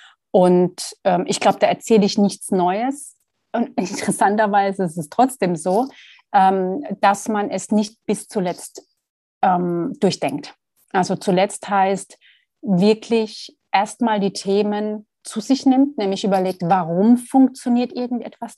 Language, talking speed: German, 130 wpm